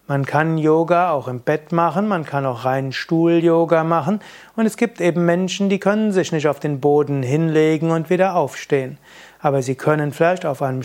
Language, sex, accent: German, male, German